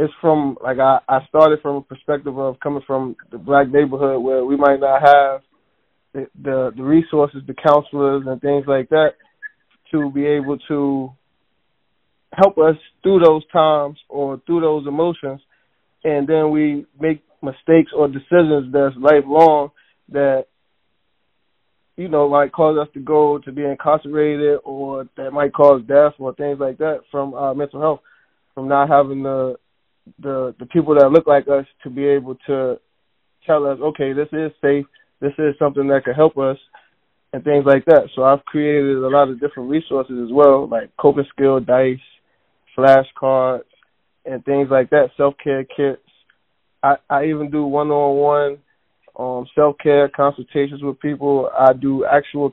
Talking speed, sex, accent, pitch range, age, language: 165 wpm, male, American, 135-150 Hz, 20-39, English